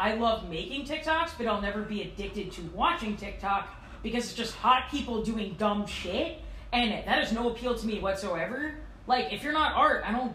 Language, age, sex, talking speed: English, 20-39, female, 205 wpm